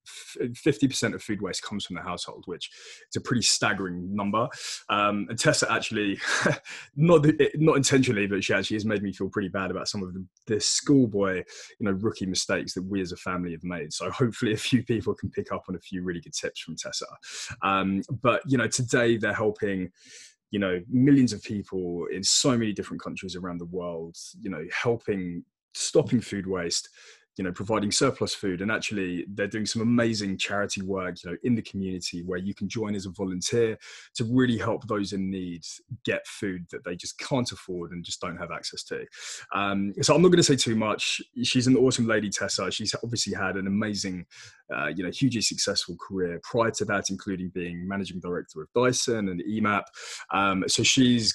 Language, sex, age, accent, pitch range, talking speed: English, male, 20-39, British, 95-120 Hz, 205 wpm